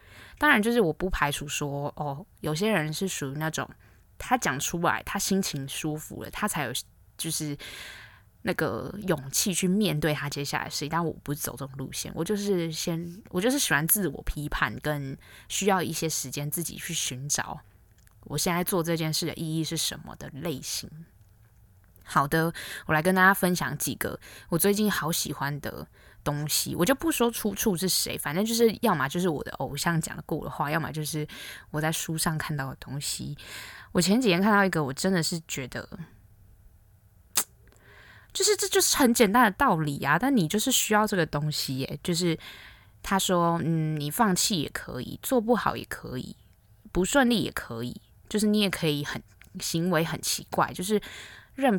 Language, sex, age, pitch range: Chinese, female, 20-39, 140-190 Hz